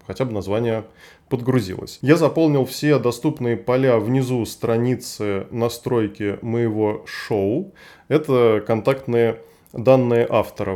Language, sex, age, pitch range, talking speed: Russian, male, 20-39, 115-140 Hz, 100 wpm